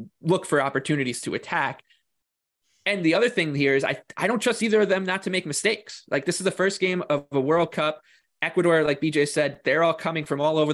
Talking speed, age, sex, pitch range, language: 235 wpm, 20-39, male, 135-160 Hz, English